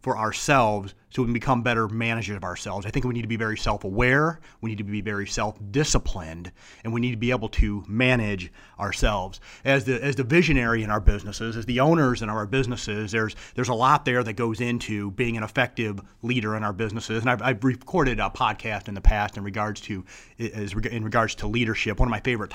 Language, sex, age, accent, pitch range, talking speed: English, male, 30-49, American, 105-125 Hz, 220 wpm